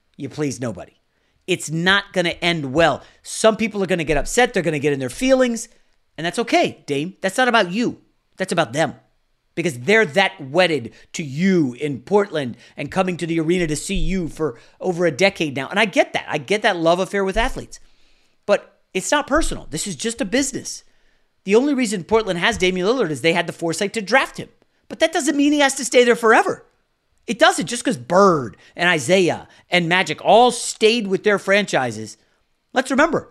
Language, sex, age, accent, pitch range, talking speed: English, male, 40-59, American, 165-245 Hz, 210 wpm